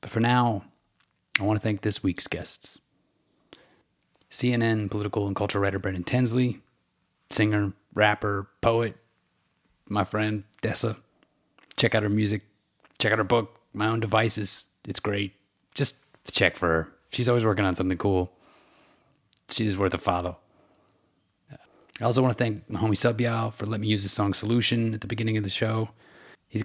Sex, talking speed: male, 160 wpm